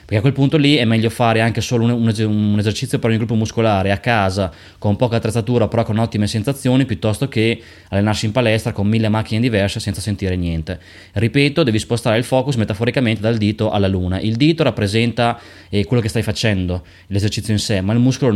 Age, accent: 20-39, native